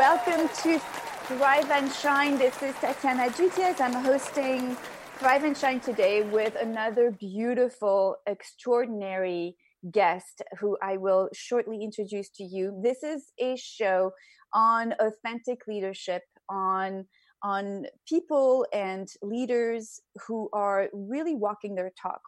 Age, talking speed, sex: 30-49, 120 wpm, female